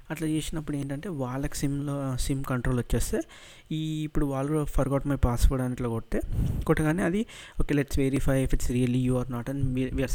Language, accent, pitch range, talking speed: Telugu, native, 120-145 Hz, 175 wpm